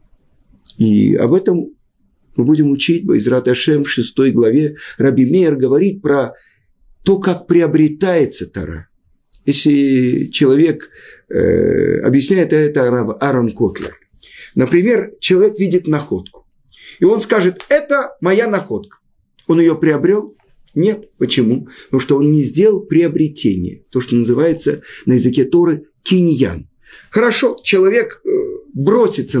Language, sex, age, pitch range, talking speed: Russian, male, 50-69, 125-185 Hz, 115 wpm